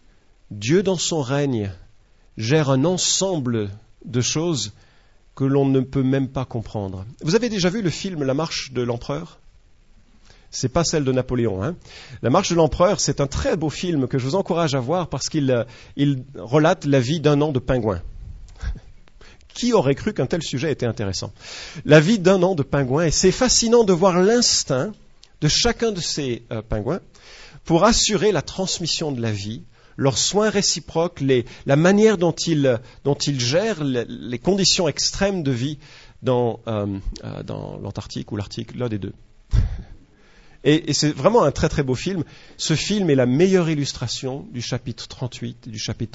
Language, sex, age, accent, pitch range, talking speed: English, male, 40-59, French, 115-170 Hz, 175 wpm